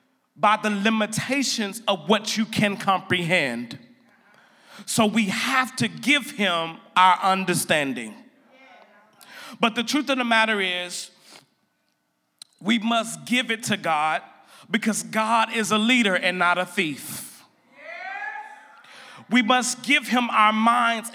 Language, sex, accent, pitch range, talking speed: English, male, American, 215-270 Hz, 125 wpm